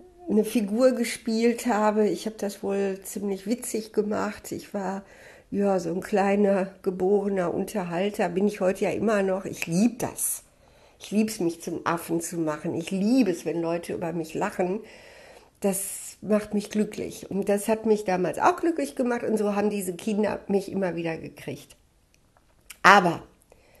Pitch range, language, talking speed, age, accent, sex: 180-220 Hz, German, 165 wpm, 60-79, German, female